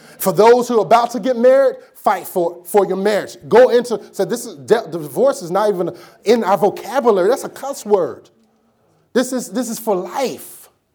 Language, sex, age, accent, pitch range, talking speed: English, male, 30-49, American, 170-215 Hz, 190 wpm